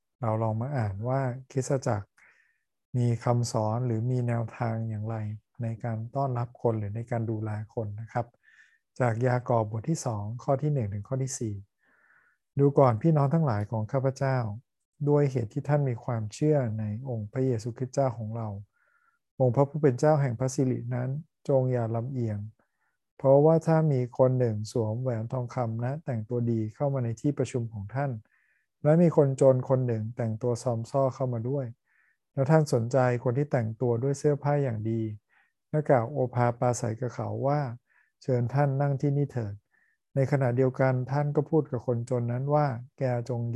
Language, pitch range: Thai, 115-140 Hz